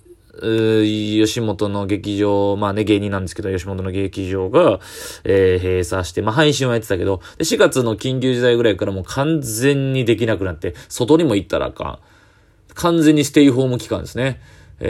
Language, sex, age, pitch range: Japanese, male, 20-39, 95-130 Hz